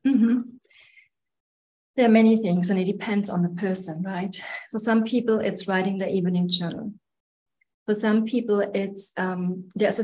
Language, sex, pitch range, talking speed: English, female, 185-215 Hz, 165 wpm